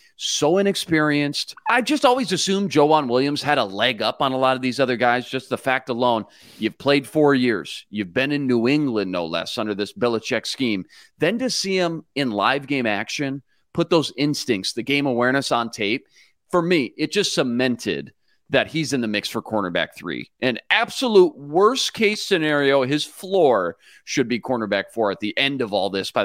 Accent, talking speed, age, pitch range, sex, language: American, 195 wpm, 40-59, 110-155 Hz, male, English